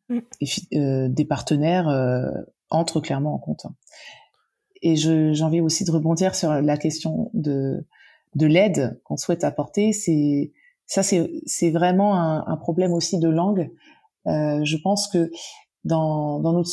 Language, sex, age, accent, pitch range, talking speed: French, female, 30-49, French, 155-190 Hz, 155 wpm